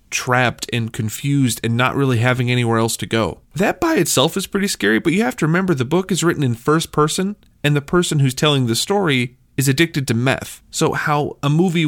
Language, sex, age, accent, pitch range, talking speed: English, male, 30-49, American, 120-155 Hz, 220 wpm